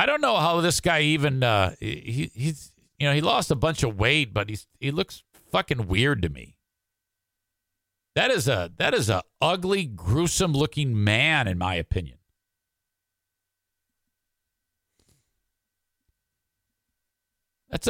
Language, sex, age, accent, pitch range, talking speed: English, male, 50-69, American, 100-160 Hz, 130 wpm